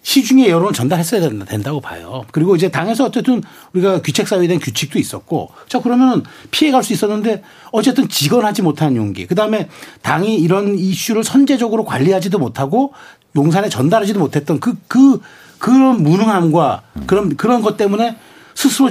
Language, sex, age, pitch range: Korean, male, 40-59, 145-215 Hz